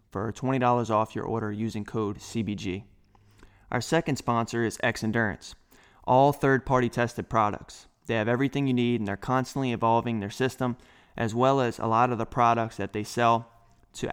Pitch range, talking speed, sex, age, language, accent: 110-130 Hz, 175 wpm, male, 20-39, English, American